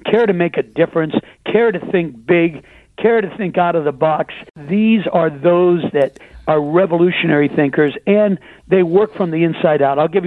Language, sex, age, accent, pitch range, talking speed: English, male, 60-79, American, 155-195 Hz, 185 wpm